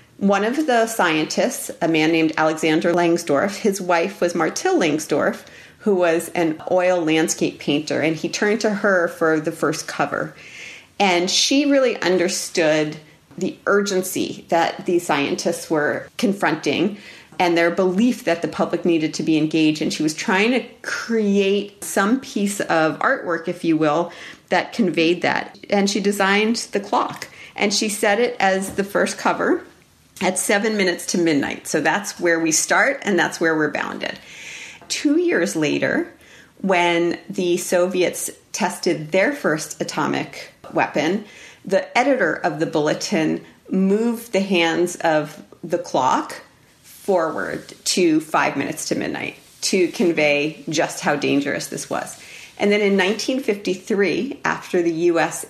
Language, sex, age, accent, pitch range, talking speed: English, female, 40-59, American, 160-205 Hz, 145 wpm